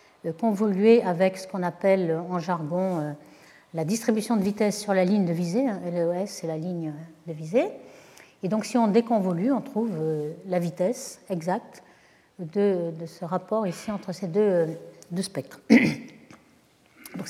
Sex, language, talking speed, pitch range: female, French, 155 wpm, 180-230 Hz